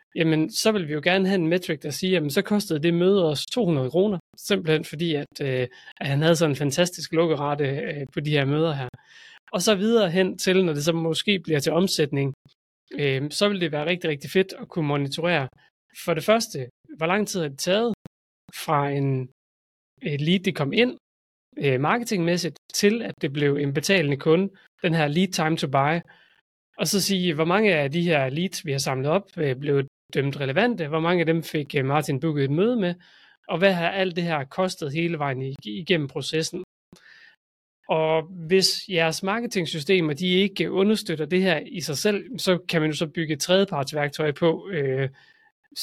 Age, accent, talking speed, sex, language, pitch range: 30-49, native, 190 wpm, male, Danish, 145-185 Hz